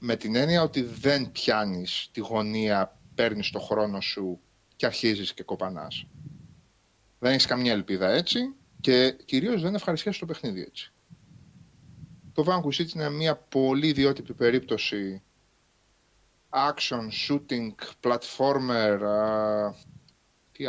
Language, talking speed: Greek, 115 wpm